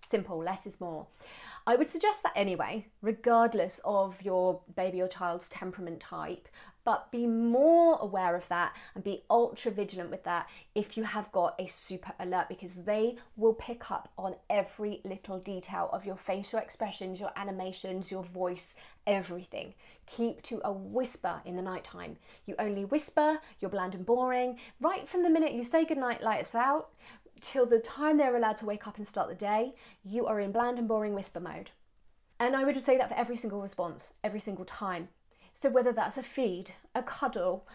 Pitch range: 190-255 Hz